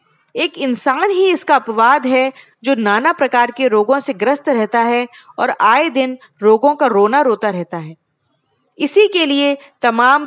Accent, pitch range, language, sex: native, 215-290 Hz, Hindi, female